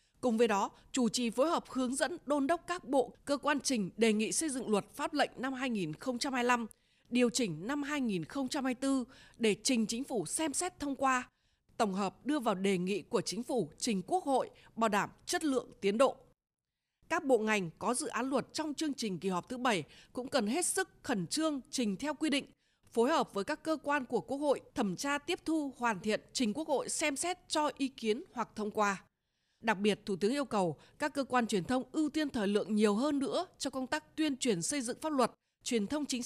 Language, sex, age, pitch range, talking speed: Vietnamese, female, 20-39, 215-290 Hz, 225 wpm